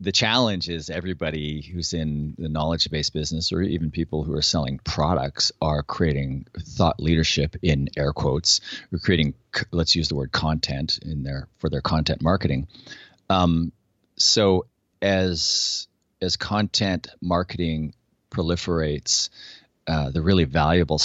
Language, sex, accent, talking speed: English, male, American, 135 wpm